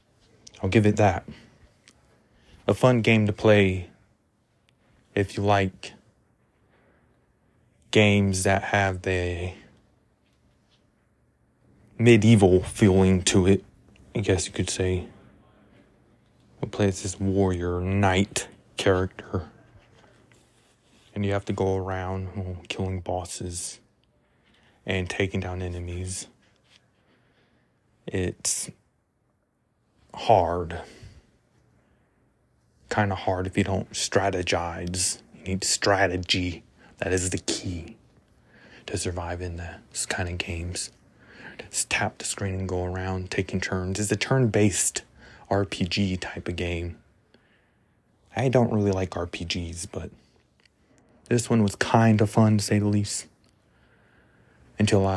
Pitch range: 90-105 Hz